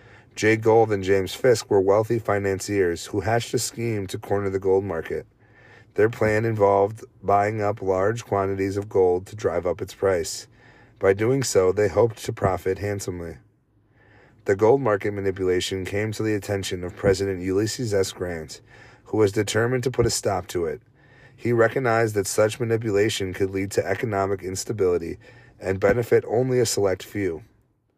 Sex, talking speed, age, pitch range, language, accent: male, 165 wpm, 30-49, 100-120 Hz, English, American